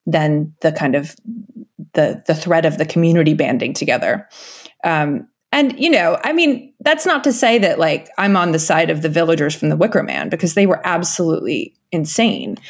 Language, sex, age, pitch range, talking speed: English, female, 20-39, 165-235 Hz, 190 wpm